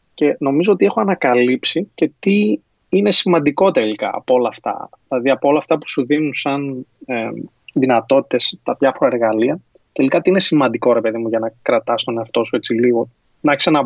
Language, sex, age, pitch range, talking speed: Greek, male, 20-39, 120-160 Hz, 190 wpm